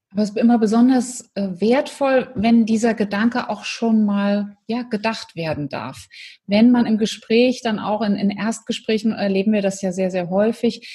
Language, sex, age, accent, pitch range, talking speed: German, female, 30-49, German, 205-255 Hz, 175 wpm